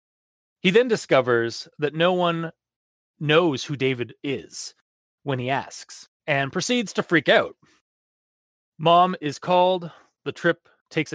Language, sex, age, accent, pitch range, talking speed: English, male, 30-49, American, 135-170 Hz, 130 wpm